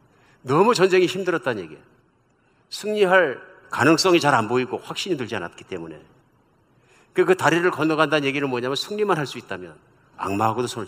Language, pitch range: Korean, 125-175 Hz